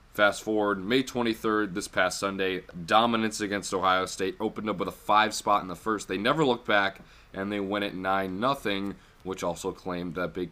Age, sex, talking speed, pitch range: 20-39, male, 200 wpm, 85-105 Hz